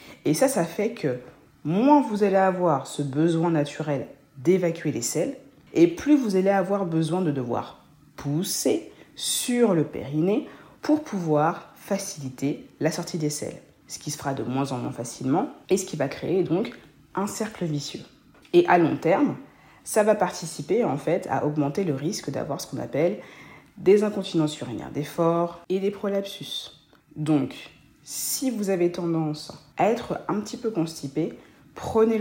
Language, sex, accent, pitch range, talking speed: French, female, French, 140-185 Hz, 165 wpm